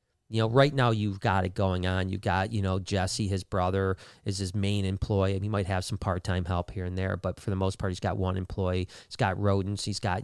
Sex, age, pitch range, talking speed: male, 40-59, 100-130 Hz, 250 wpm